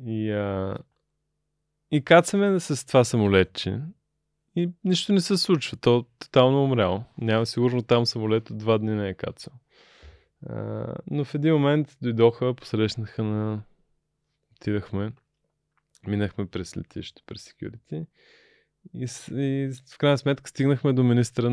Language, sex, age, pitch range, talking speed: Bulgarian, male, 20-39, 110-150 Hz, 130 wpm